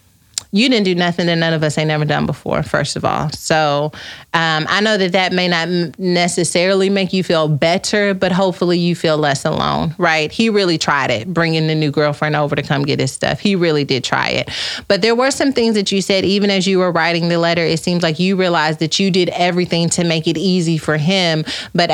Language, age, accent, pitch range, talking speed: English, 30-49, American, 165-195 Hz, 235 wpm